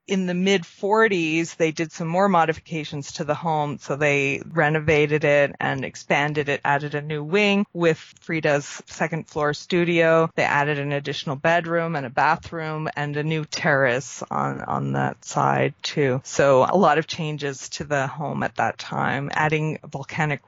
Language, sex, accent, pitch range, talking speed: English, female, American, 145-165 Hz, 165 wpm